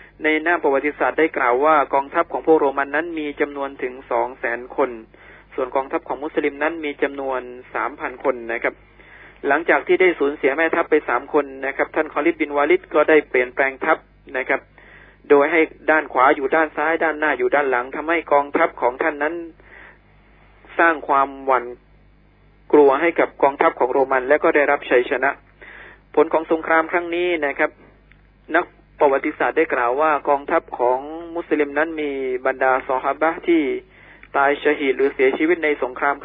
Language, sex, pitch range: Thai, male, 135-160 Hz